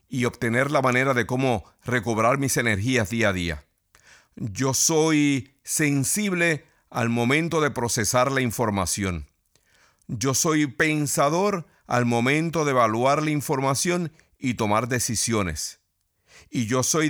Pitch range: 110-150 Hz